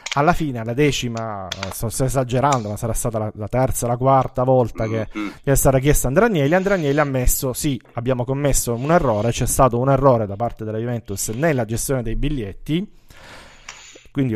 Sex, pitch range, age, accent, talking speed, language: male, 115-140 Hz, 30-49, native, 185 wpm, Italian